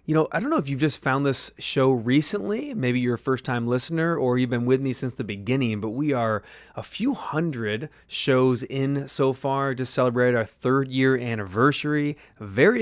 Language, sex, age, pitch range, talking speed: English, male, 20-39, 110-135 Hz, 200 wpm